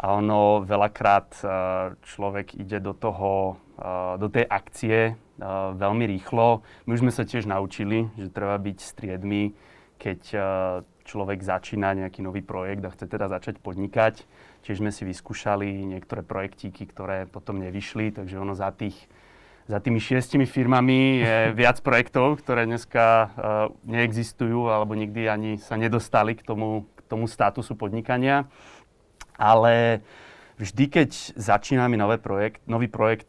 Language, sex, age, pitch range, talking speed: Slovak, male, 30-49, 100-115 Hz, 135 wpm